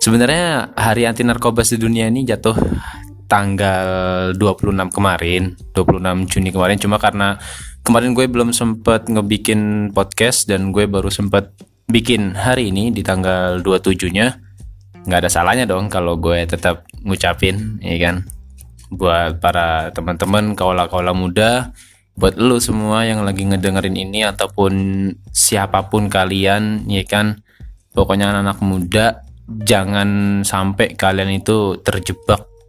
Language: Indonesian